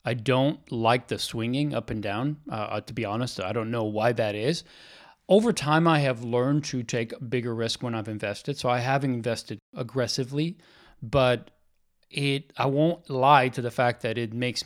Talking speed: 190 wpm